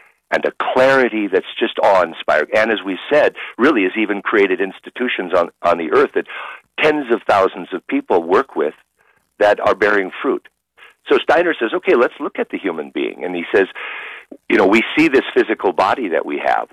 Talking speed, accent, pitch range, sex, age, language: 195 wpm, American, 300-420 Hz, male, 50-69, English